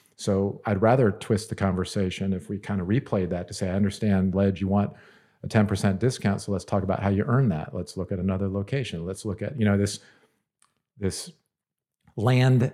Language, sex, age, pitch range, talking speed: English, male, 50-69, 95-110 Hz, 205 wpm